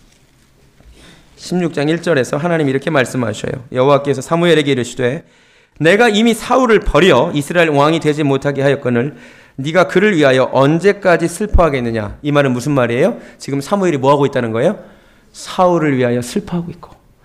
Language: Korean